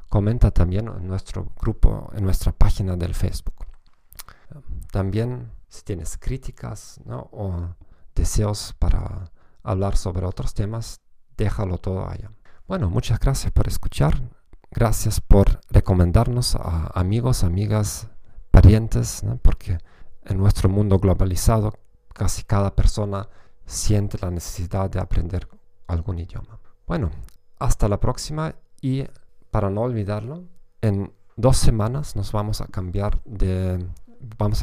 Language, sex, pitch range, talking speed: Spanish, male, 95-115 Hz, 120 wpm